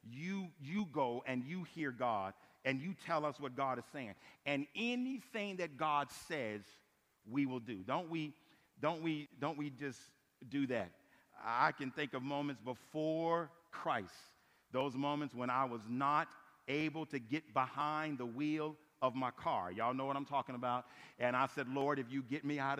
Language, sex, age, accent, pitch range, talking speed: English, male, 50-69, American, 135-170 Hz, 180 wpm